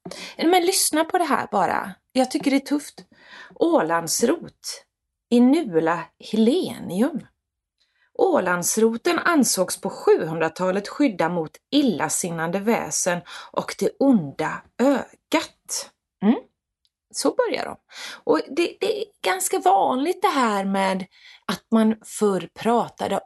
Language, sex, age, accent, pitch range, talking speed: Swedish, female, 30-49, native, 195-310 Hz, 110 wpm